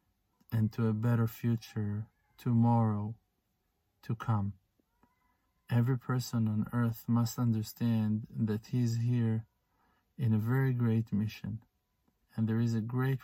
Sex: male